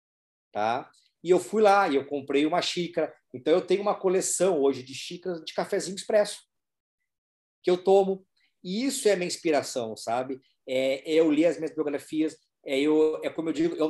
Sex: male